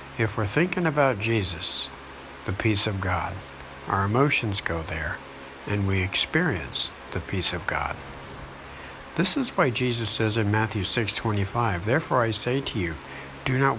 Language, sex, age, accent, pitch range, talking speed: English, male, 60-79, American, 70-115 Hz, 155 wpm